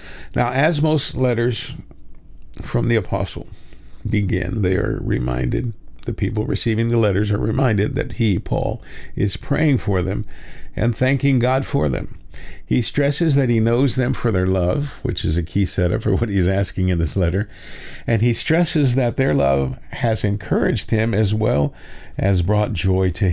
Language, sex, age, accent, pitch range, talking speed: English, male, 50-69, American, 95-120 Hz, 170 wpm